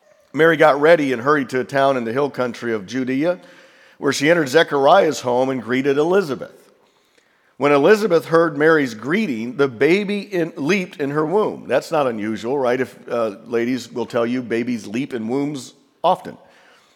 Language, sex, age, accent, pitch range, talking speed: English, male, 50-69, American, 125-170 Hz, 170 wpm